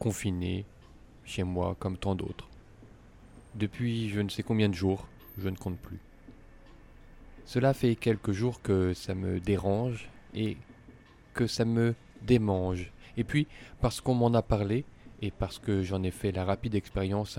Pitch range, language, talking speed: 95-115 Hz, French, 160 wpm